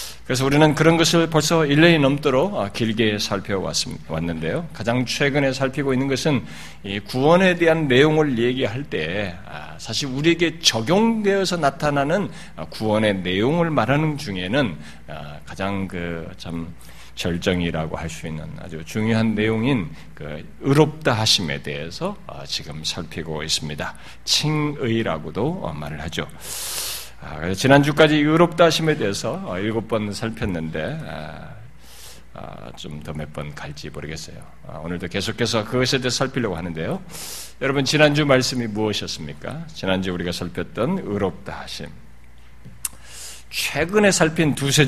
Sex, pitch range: male, 85-140 Hz